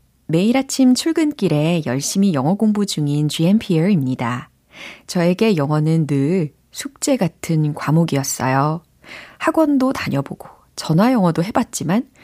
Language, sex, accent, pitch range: Korean, female, native, 145-200 Hz